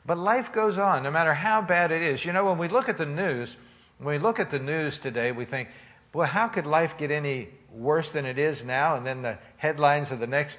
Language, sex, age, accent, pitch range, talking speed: English, male, 60-79, American, 115-160 Hz, 255 wpm